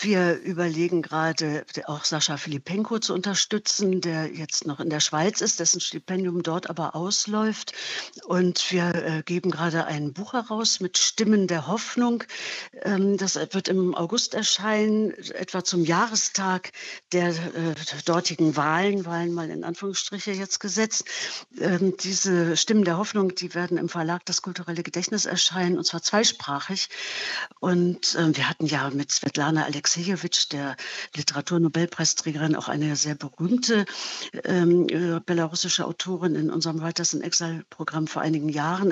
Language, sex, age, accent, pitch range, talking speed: German, female, 60-79, German, 165-195 Hz, 135 wpm